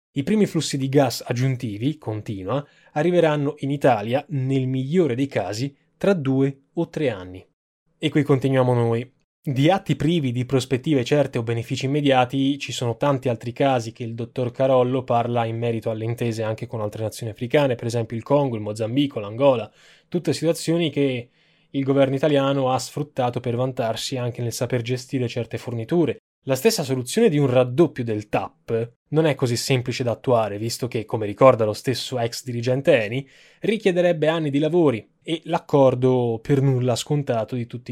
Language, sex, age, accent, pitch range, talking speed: Italian, male, 10-29, native, 115-145 Hz, 170 wpm